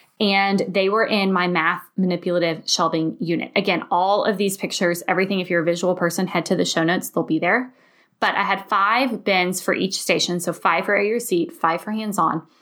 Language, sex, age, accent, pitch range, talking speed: English, female, 20-39, American, 175-210 Hz, 210 wpm